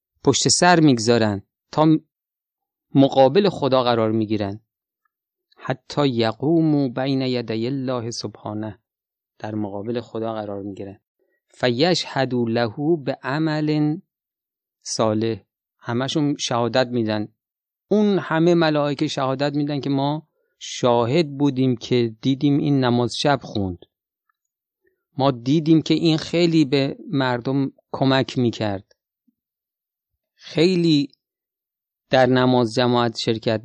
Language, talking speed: Persian, 100 wpm